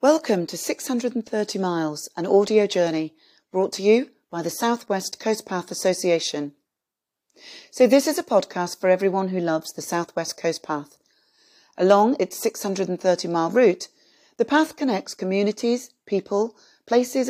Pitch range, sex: 175-225 Hz, female